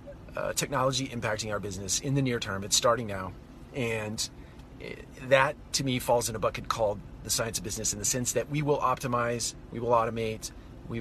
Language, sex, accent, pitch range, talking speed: English, male, American, 100-125 Hz, 195 wpm